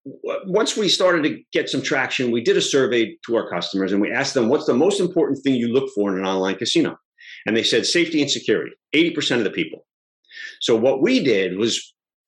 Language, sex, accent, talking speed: English, male, American, 220 wpm